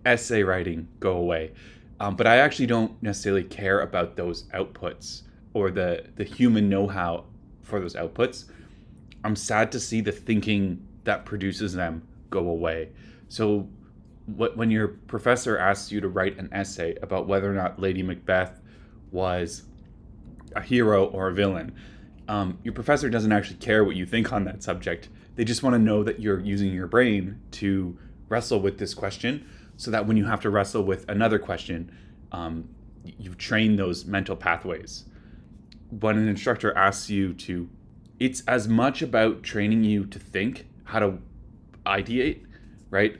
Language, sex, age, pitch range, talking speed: English, male, 20-39, 95-110 Hz, 165 wpm